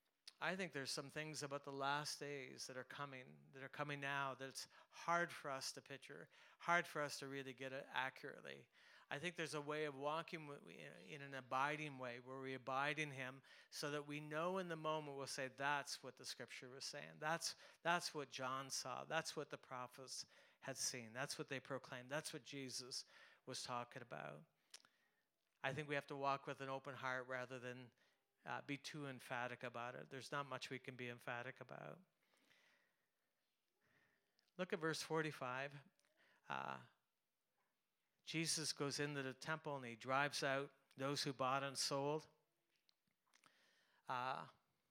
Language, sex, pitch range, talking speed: English, male, 130-150 Hz, 170 wpm